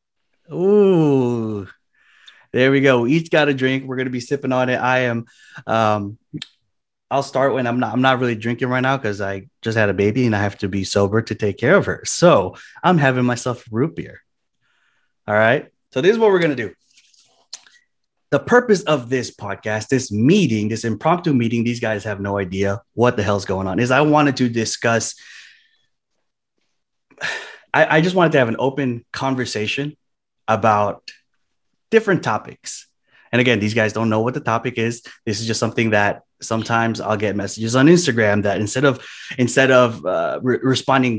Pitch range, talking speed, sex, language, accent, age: 110-135 Hz, 190 wpm, male, English, American, 20-39